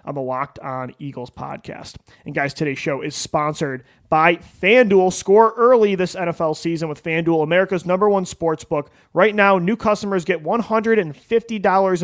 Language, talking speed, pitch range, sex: English, 160 wpm, 150-195 Hz, male